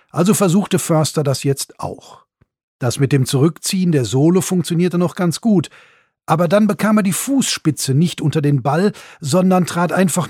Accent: German